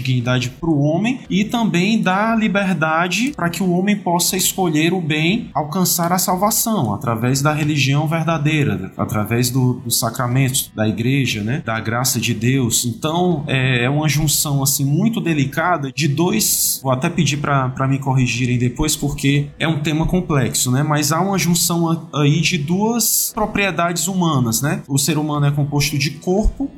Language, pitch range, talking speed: Portuguese, 125-175 Hz, 170 wpm